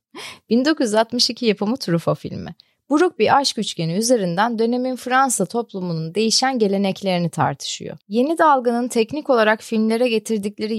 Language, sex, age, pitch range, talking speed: Turkish, female, 30-49, 175-250 Hz, 115 wpm